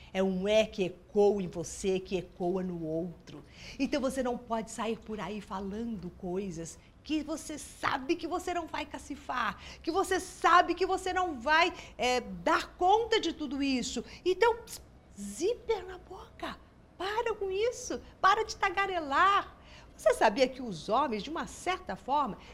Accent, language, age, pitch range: Brazilian, Portuguese, 50-69, 215-325 Hz